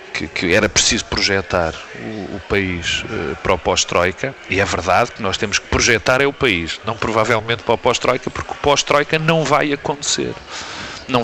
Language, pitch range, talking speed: Portuguese, 110-140 Hz, 185 wpm